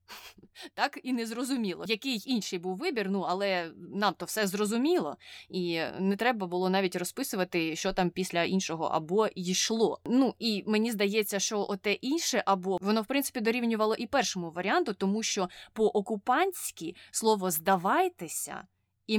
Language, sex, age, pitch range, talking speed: Ukrainian, female, 20-39, 185-225 Hz, 145 wpm